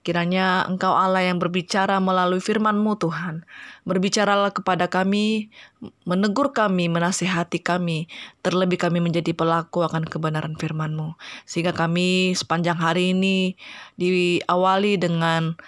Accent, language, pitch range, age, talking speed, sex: native, Indonesian, 165-195 Hz, 20-39, 110 wpm, female